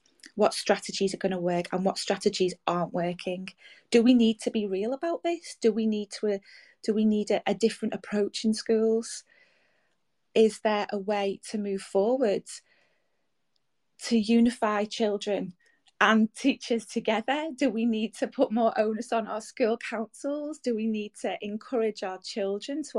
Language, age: English, 30-49